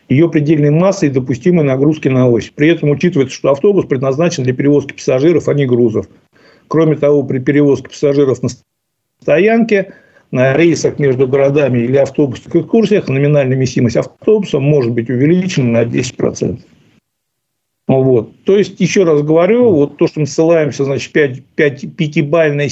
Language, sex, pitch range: Russian, male, 130-165 Hz